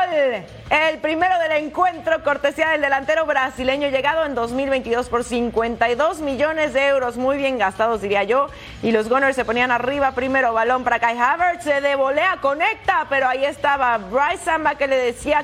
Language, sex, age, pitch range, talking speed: Spanish, female, 30-49, 260-325 Hz, 170 wpm